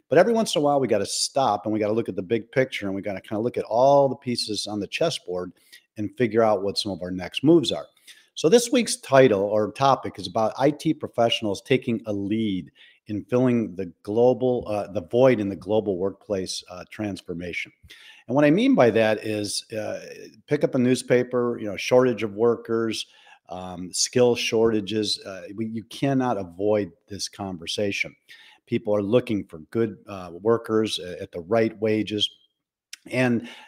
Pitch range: 100-125 Hz